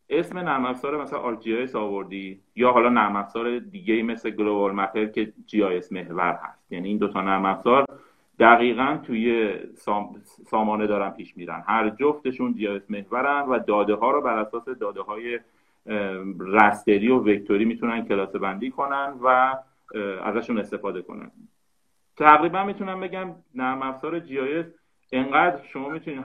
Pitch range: 105-135 Hz